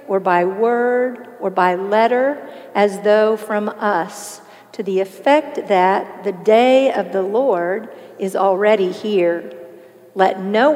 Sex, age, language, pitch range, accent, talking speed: female, 50-69, English, 195-250 Hz, American, 135 wpm